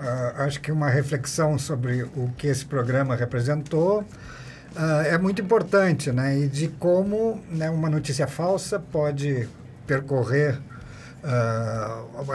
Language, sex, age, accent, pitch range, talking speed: Portuguese, male, 50-69, Brazilian, 125-150 Hz, 125 wpm